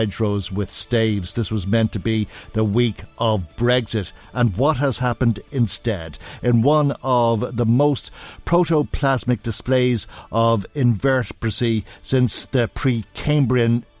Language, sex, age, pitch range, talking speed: English, male, 50-69, 105-125 Hz, 125 wpm